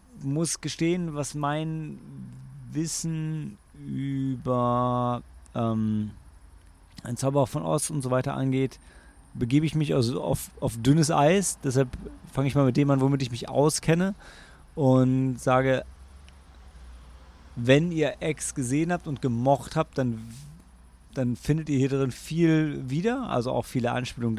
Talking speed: 140 wpm